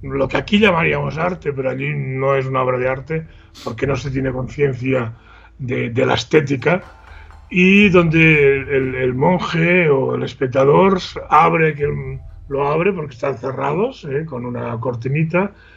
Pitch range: 125-155 Hz